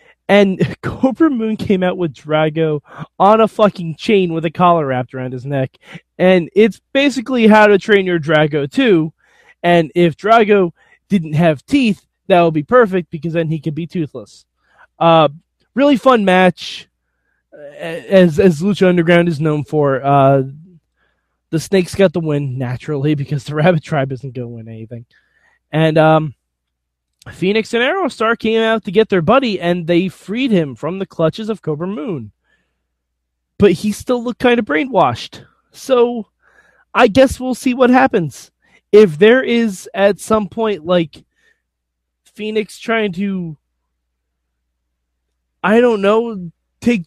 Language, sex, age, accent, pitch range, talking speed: English, male, 20-39, American, 150-215 Hz, 150 wpm